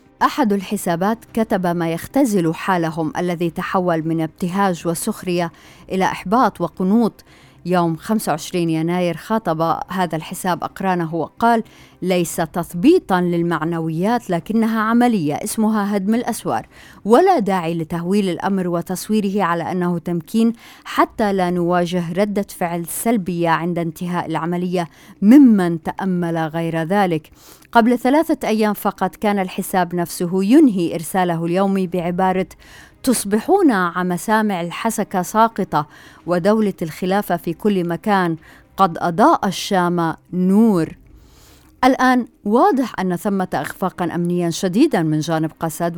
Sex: female